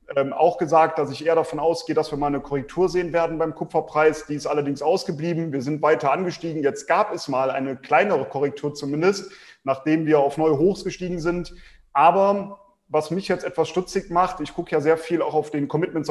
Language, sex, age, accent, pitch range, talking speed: German, male, 30-49, German, 150-175 Hz, 205 wpm